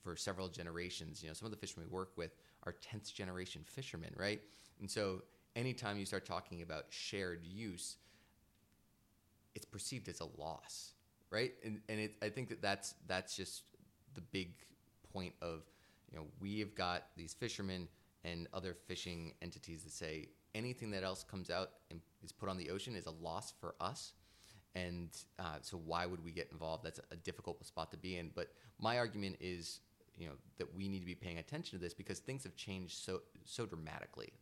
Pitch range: 85-100 Hz